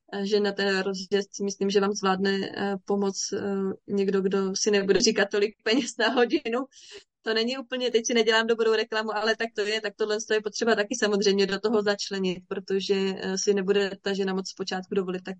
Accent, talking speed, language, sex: native, 185 wpm, Czech, female